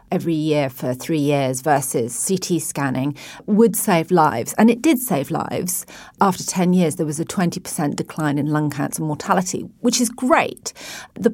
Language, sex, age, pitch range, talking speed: English, female, 40-59, 165-210 Hz, 170 wpm